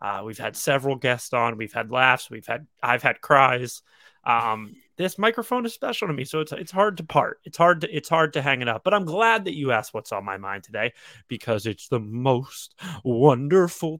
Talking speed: 225 wpm